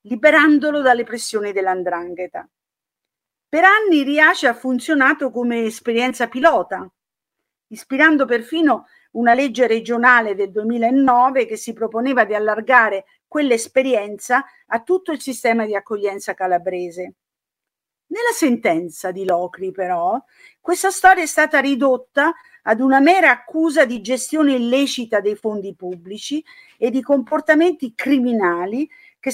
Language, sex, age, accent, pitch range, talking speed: Italian, female, 50-69, native, 210-300 Hz, 115 wpm